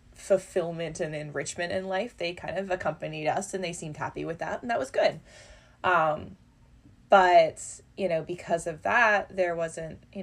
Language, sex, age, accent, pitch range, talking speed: English, female, 20-39, American, 150-190 Hz, 175 wpm